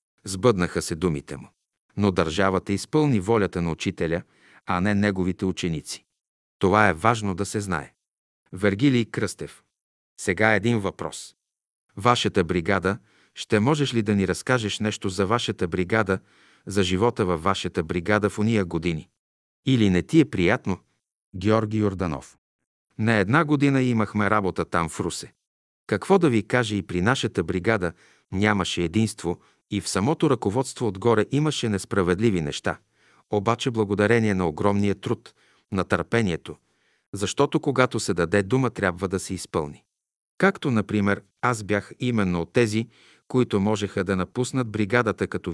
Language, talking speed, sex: Bulgarian, 140 wpm, male